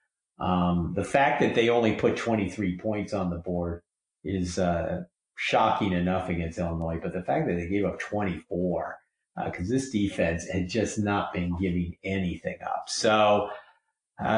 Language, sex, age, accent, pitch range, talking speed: English, male, 50-69, American, 95-115 Hz, 165 wpm